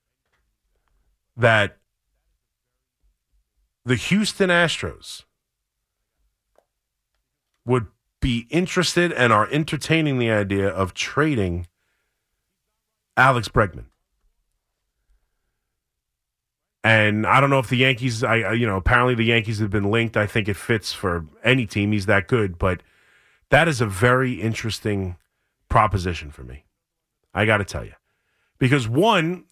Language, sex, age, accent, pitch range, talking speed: English, male, 40-59, American, 105-170 Hz, 120 wpm